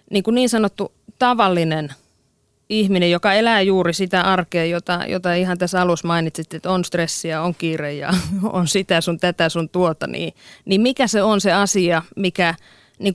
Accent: native